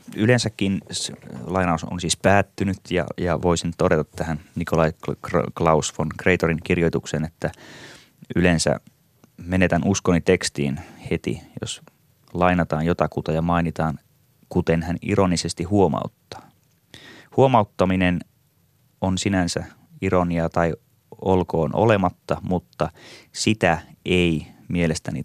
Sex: male